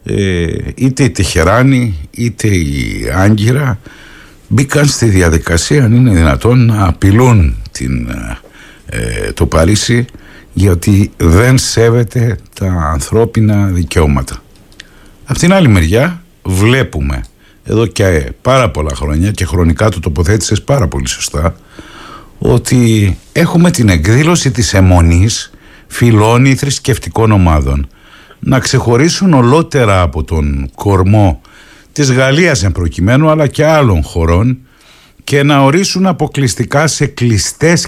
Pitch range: 95-130 Hz